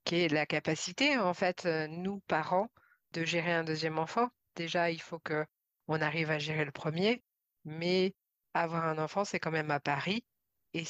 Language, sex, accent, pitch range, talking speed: French, female, French, 155-180 Hz, 175 wpm